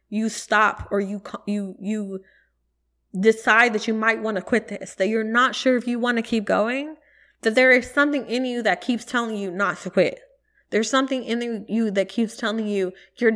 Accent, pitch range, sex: American, 190-230 Hz, female